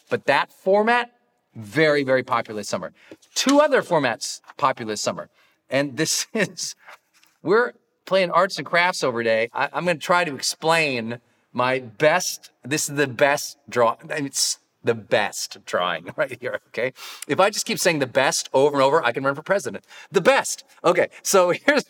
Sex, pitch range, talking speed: male, 140-190 Hz, 180 wpm